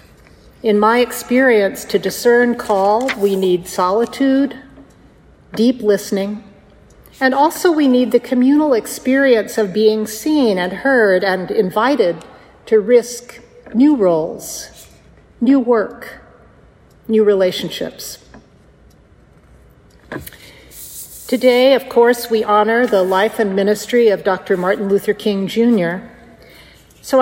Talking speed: 110 wpm